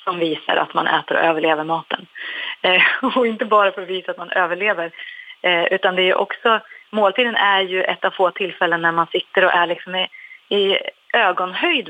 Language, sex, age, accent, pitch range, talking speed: English, female, 30-49, Swedish, 175-230 Hz, 200 wpm